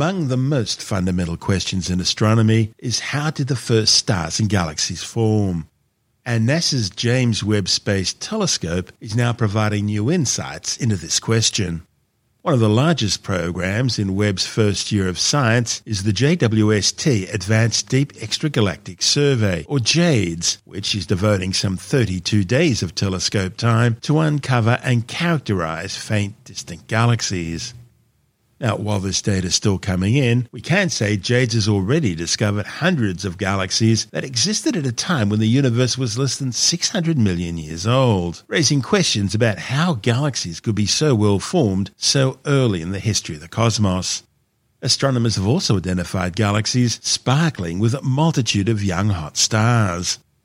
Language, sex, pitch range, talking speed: English, male, 100-130 Hz, 155 wpm